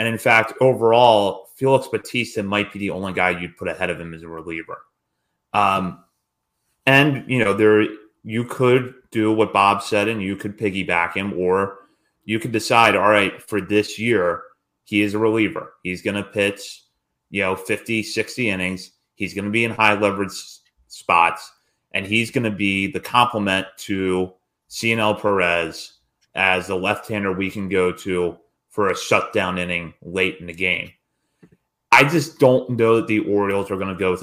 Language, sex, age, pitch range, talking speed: English, male, 30-49, 95-110 Hz, 180 wpm